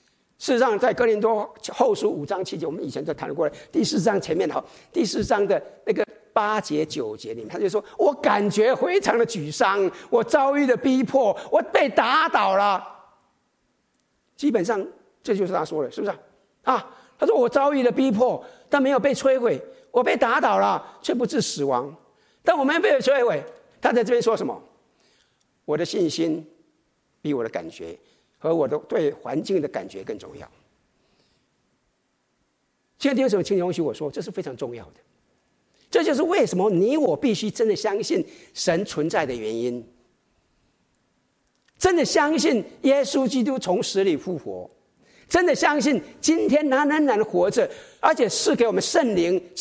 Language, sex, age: Chinese, male, 50-69